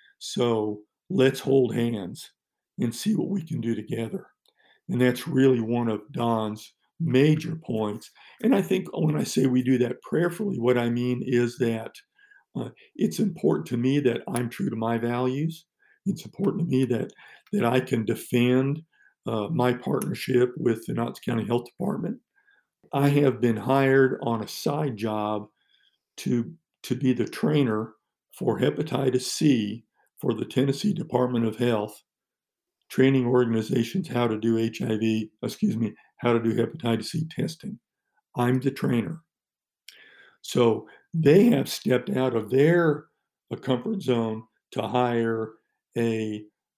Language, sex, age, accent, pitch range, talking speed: English, male, 50-69, American, 115-145 Hz, 145 wpm